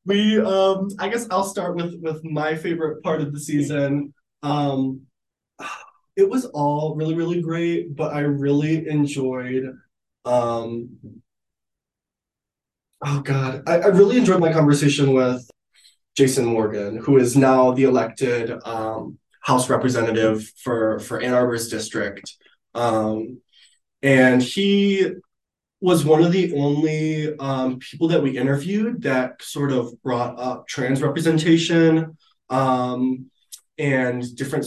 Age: 20-39